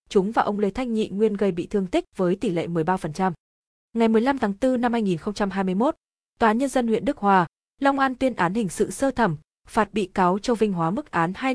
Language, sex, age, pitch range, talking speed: Vietnamese, female, 20-39, 180-235 Hz, 235 wpm